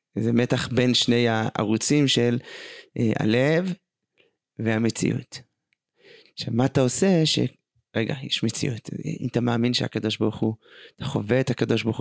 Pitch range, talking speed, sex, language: 120-170 Hz, 135 wpm, male, Hebrew